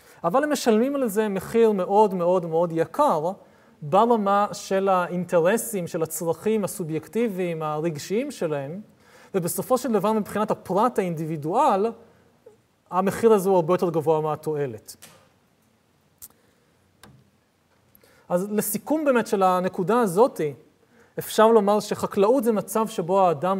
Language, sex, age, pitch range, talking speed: Hebrew, male, 30-49, 170-220 Hz, 110 wpm